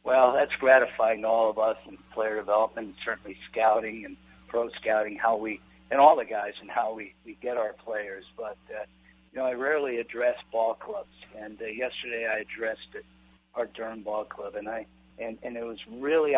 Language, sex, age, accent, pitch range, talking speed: English, male, 50-69, American, 110-130 Hz, 200 wpm